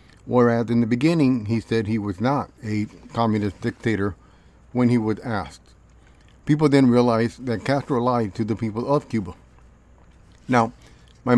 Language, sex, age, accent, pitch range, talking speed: English, male, 50-69, American, 105-130 Hz, 155 wpm